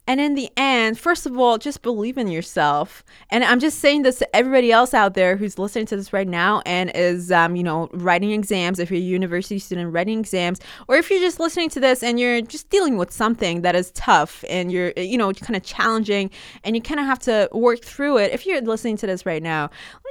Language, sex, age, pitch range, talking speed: English, female, 20-39, 185-265 Hz, 240 wpm